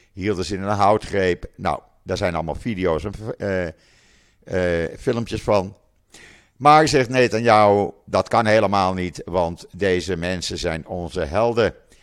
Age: 50-69